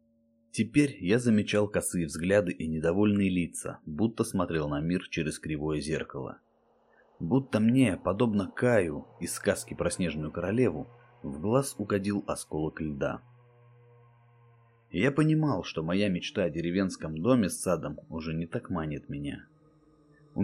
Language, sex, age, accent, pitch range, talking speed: Russian, male, 30-49, native, 80-120 Hz, 130 wpm